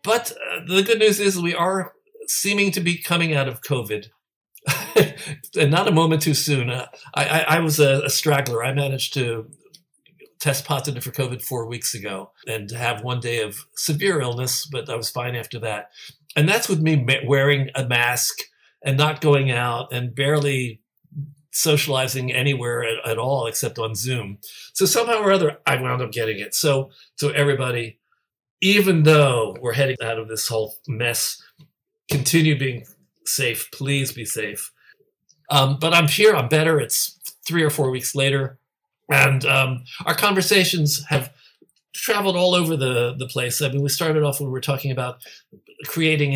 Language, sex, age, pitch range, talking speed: English, male, 60-79, 120-155 Hz, 170 wpm